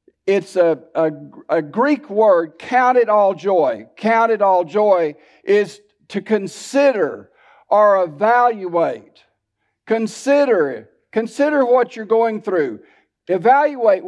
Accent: American